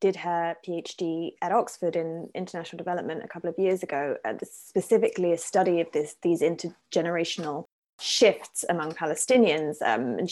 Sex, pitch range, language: female, 175-210 Hz, English